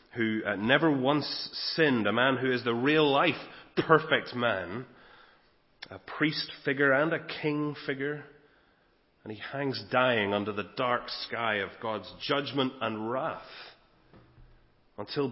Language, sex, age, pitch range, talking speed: English, male, 30-49, 110-145 Hz, 135 wpm